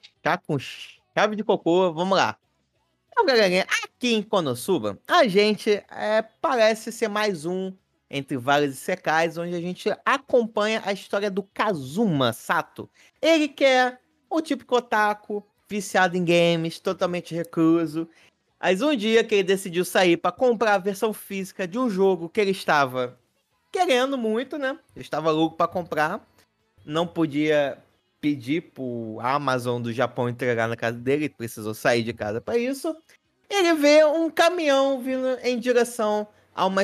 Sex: male